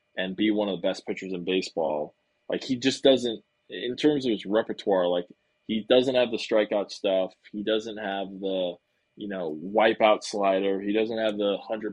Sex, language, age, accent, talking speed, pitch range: male, English, 20-39, American, 190 wpm, 95-115 Hz